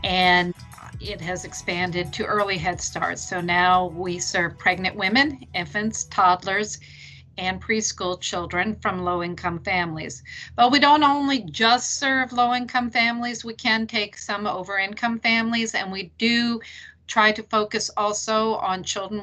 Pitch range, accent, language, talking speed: 180-220 Hz, American, English, 140 wpm